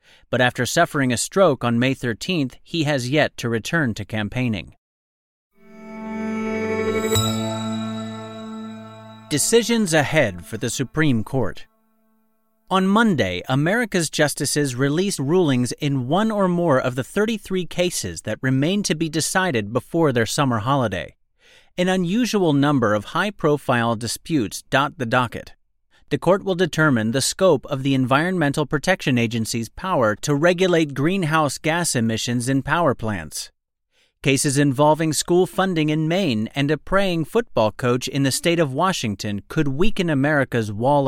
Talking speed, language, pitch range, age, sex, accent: 135 wpm, English, 120-175 Hz, 40-59, male, American